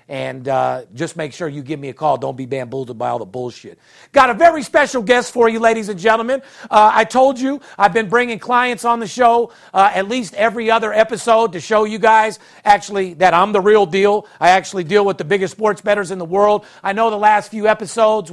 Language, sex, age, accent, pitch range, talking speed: English, male, 50-69, American, 195-230 Hz, 235 wpm